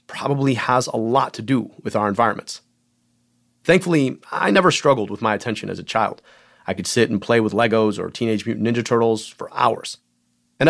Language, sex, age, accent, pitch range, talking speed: English, male, 30-49, American, 115-155 Hz, 190 wpm